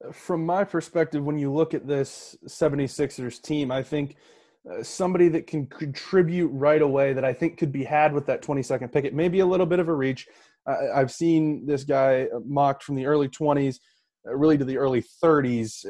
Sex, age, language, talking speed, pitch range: male, 20-39, English, 205 wpm, 130-150 Hz